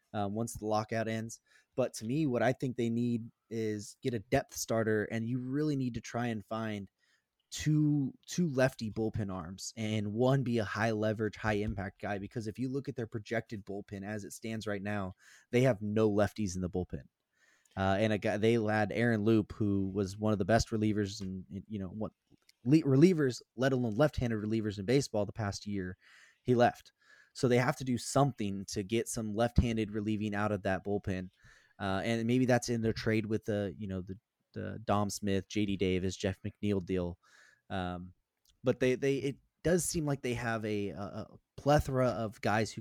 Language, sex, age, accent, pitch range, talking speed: English, male, 20-39, American, 100-120 Hz, 200 wpm